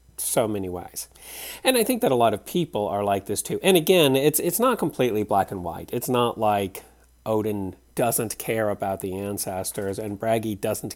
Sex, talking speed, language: male, 195 wpm, English